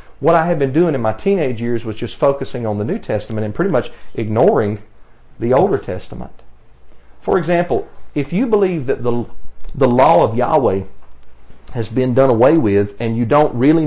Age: 40-59